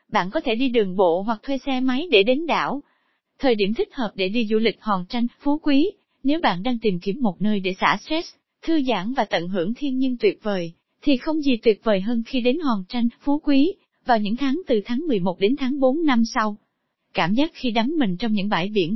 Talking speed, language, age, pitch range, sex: 240 wpm, Vietnamese, 20-39, 215-280 Hz, female